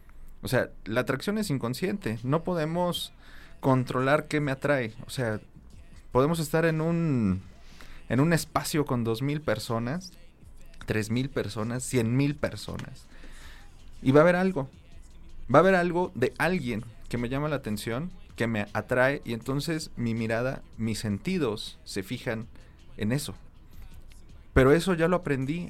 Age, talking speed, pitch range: 30-49, 150 wpm, 110-145 Hz